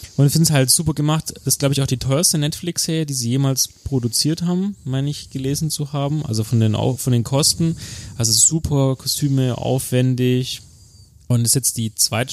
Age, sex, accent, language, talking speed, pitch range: 30-49, male, German, German, 205 wpm, 110-135 Hz